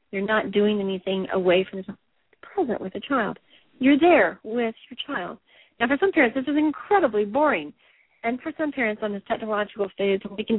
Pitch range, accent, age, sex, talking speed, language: 190-255 Hz, American, 40-59, female, 200 wpm, English